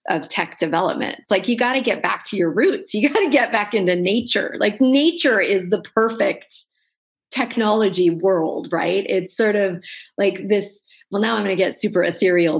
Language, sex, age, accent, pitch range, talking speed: English, female, 40-59, American, 190-255 Hz, 190 wpm